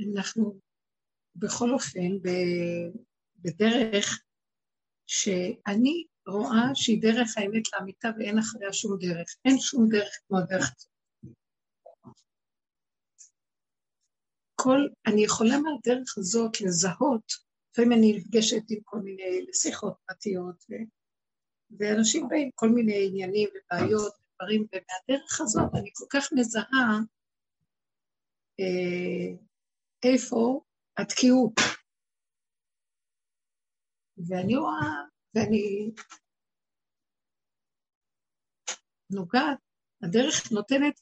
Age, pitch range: 60-79, 195-245 Hz